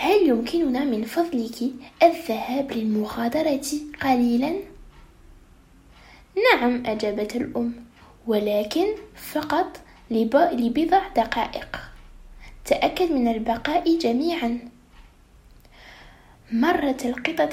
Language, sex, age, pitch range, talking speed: French, female, 10-29, 240-325 Hz, 70 wpm